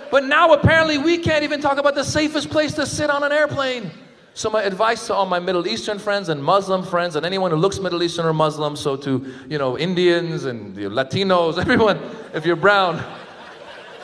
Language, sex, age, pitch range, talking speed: English, male, 30-49, 140-210 Hz, 200 wpm